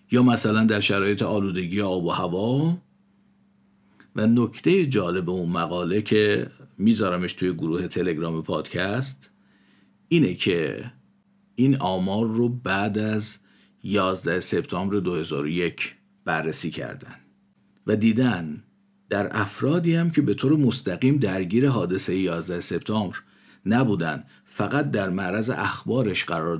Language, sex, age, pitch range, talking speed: Persian, male, 50-69, 100-140 Hz, 115 wpm